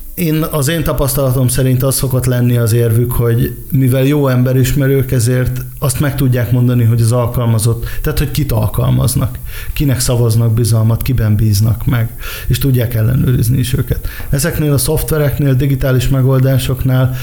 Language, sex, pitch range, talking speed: Hungarian, male, 120-135 Hz, 150 wpm